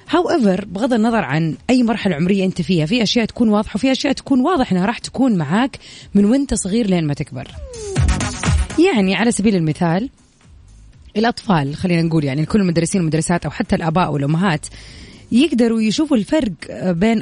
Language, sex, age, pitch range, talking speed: Arabic, female, 20-39, 160-230 Hz, 165 wpm